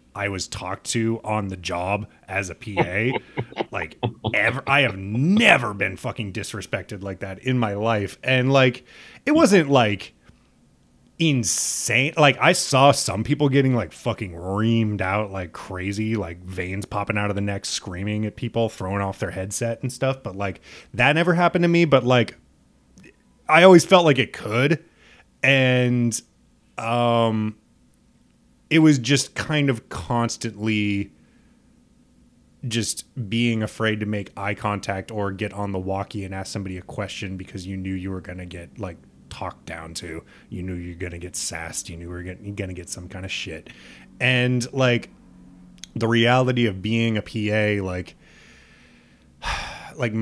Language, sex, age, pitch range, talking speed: English, male, 30-49, 95-125 Hz, 160 wpm